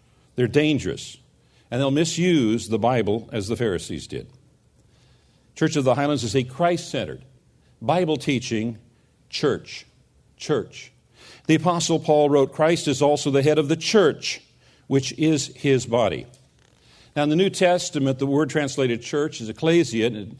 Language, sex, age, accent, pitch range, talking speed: English, male, 50-69, American, 125-155 Hz, 140 wpm